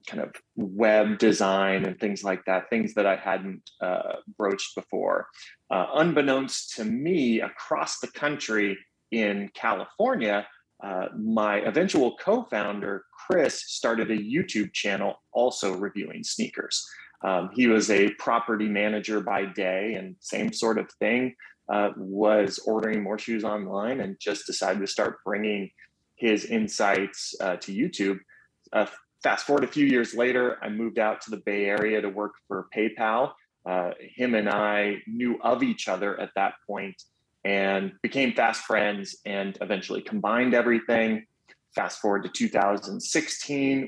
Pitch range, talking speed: 100-120 Hz, 145 wpm